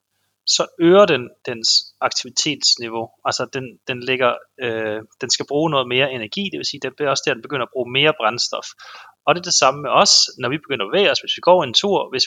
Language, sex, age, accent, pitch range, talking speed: Danish, male, 30-49, native, 115-160 Hz, 220 wpm